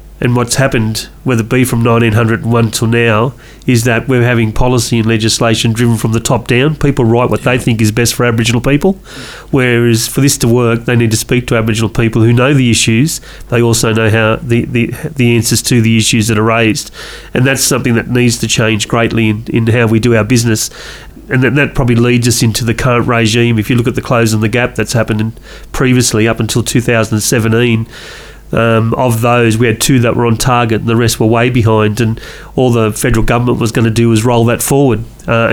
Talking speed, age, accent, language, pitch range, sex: 225 wpm, 30-49, Australian, English, 115-130 Hz, male